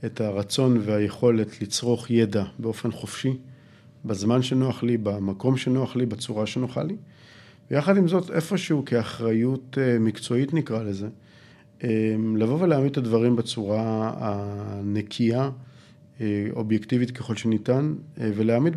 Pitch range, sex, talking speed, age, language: 110-135 Hz, male, 110 wpm, 50-69, Hebrew